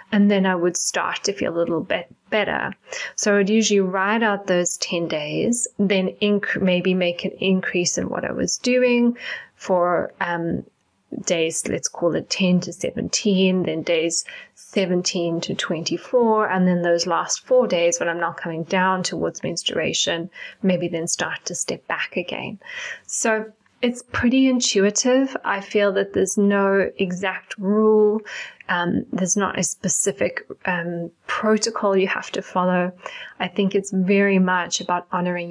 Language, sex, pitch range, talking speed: English, female, 175-210 Hz, 155 wpm